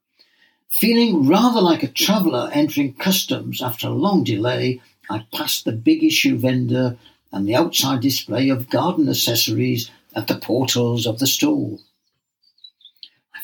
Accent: British